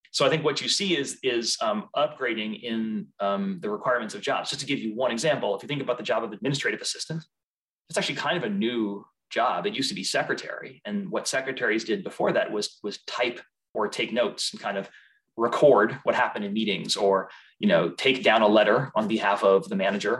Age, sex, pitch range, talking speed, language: 30-49, male, 110-145 Hz, 215 wpm, English